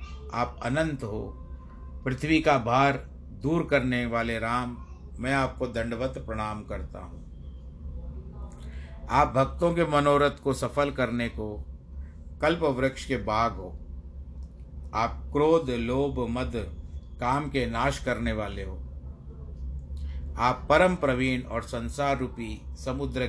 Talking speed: 120 wpm